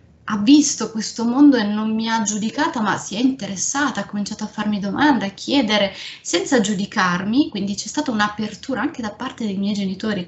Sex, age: female, 20-39